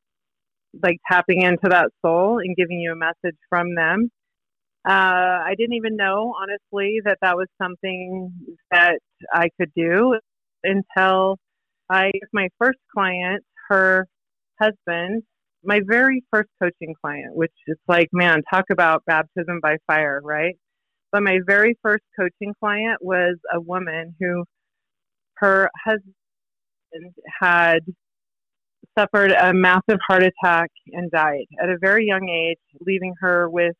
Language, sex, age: English, female, 30-49